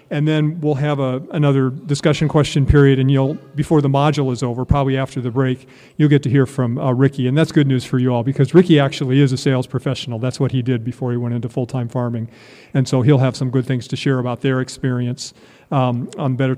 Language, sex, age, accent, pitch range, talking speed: English, male, 40-59, American, 130-160 Hz, 240 wpm